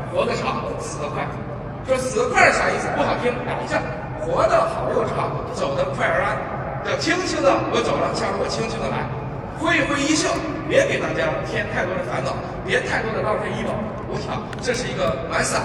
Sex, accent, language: male, native, Chinese